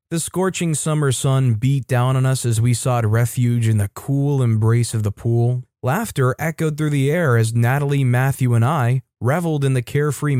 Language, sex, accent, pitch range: English, male, American, 115-145 Hz